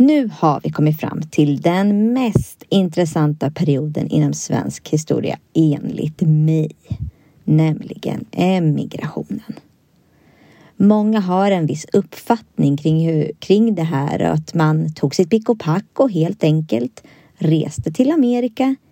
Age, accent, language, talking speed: 30-49, native, Swedish, 125 wpm